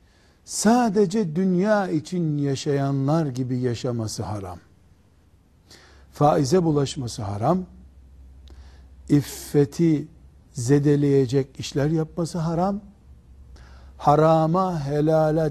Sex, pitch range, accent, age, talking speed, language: male, 105-165 Hz, native, 60-79, 65 wpm, Turkish